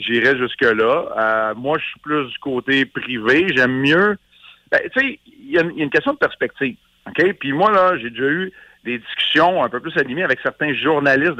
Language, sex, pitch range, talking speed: French, male, 115-145 Hz, 205 wpm